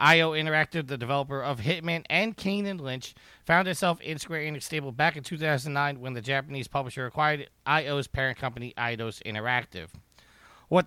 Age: 30-49